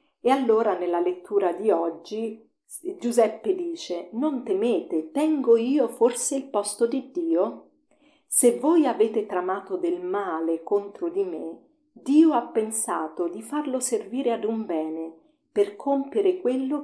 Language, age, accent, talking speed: Italian, 50-69, native, 135 wpm